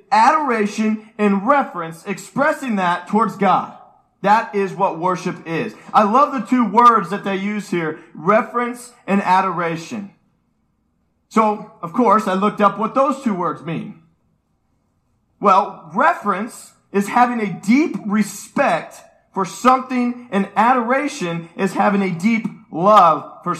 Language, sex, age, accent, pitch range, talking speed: English, male, 40-59, American, 195-245 Hz, 130 wpm